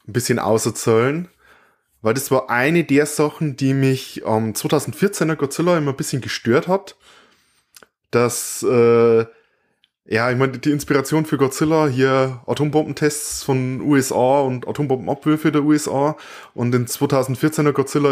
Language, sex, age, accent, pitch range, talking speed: German, male, 20-39, German, 115-145 Hz, 140 wpm